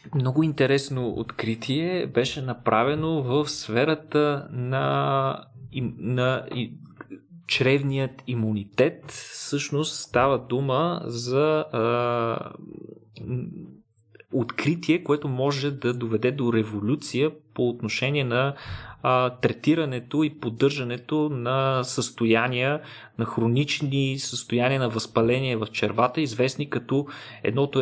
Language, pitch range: Bulgarian, 115-140 Hz